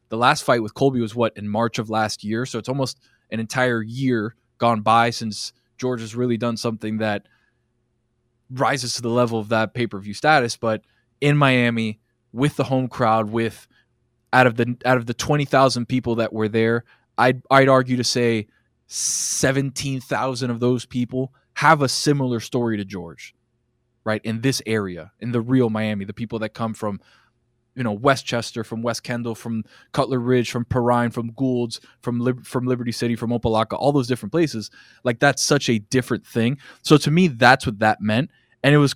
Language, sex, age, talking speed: English, male, 20-39, 185 wpm